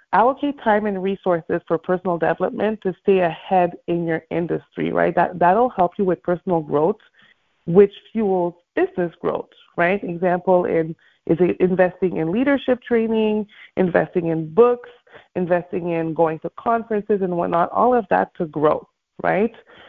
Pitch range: 175-215 Hz